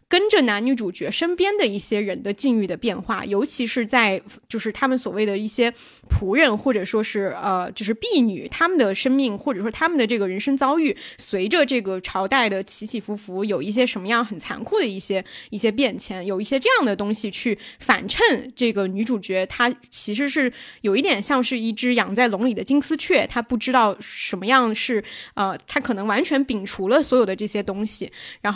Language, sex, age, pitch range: Chinese, female, 20-39, 215-275 Hz